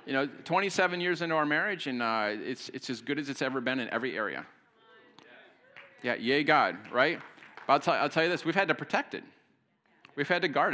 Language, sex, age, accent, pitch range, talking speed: English, male, 40-59, American, 135-165 Hz, 225 wpm